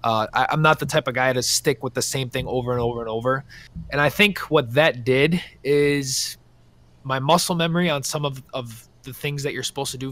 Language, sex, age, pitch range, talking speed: English, male, 20-39, 120-145 Hz, 235 wpm